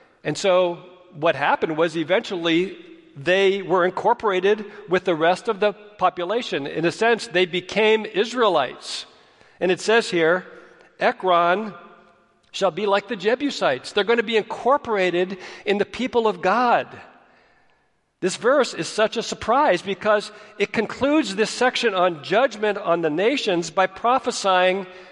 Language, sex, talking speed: English, male, 140 wpm